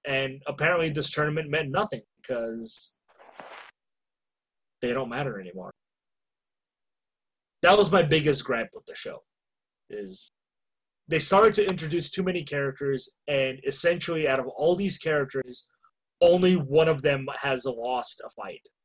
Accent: American